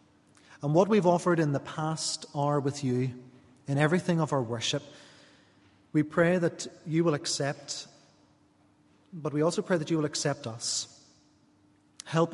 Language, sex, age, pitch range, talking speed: English, male, 30-49, 120-150 Hz, 150 wpm